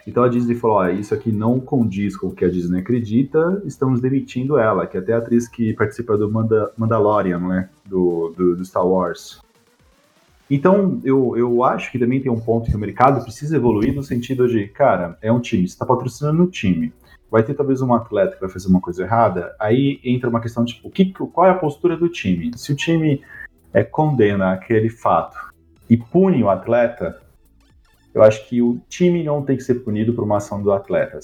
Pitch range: 105-135 Hz